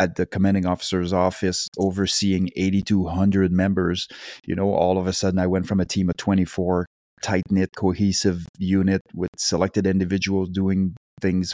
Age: 30-49